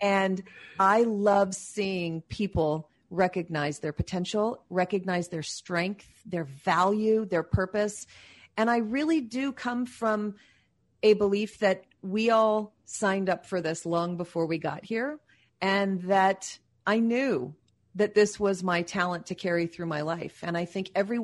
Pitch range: 170-200 Hz